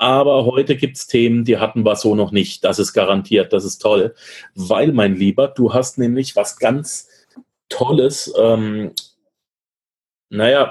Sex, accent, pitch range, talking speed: male, German, 115-140 Hz, 155 wpm